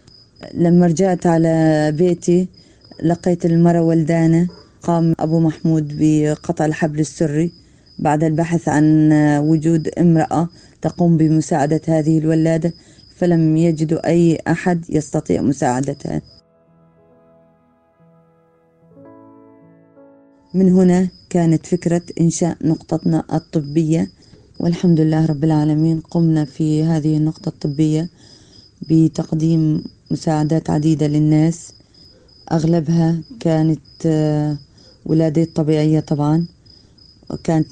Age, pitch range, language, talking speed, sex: 30-49, 150-165 Hz, Arabic, 85 wpm, female